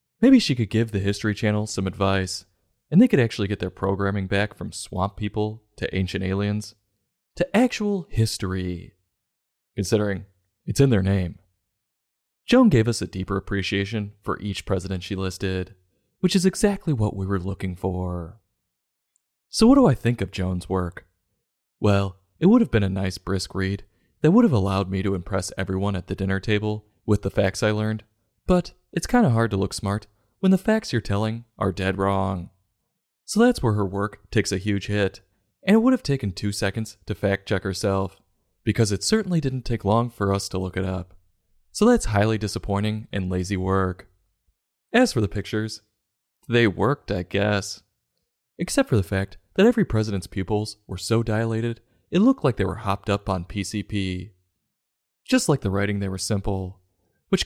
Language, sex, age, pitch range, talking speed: English, male, 30-49, 95-115 Hz, 180 wpm